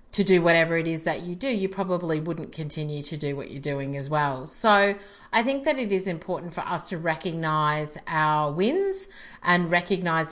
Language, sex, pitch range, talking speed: English, female, 160-205 Hz, 200 wpm